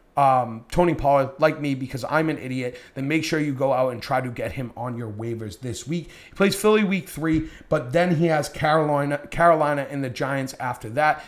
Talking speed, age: 220 wpm, 30-49